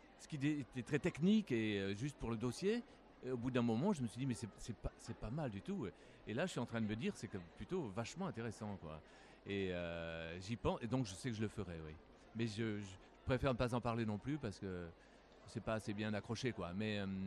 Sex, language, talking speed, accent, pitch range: male, French, 255 wpm, French, 105-135 Hz